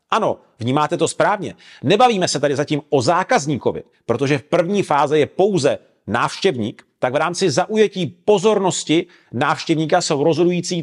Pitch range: 140-185 Hz